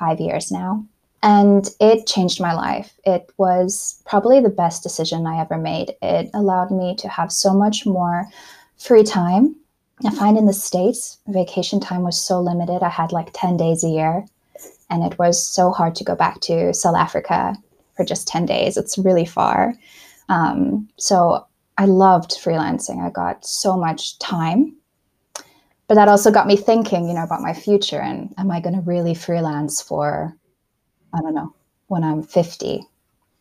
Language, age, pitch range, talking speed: English, 10-29, 170-205 Hz, 170 wpm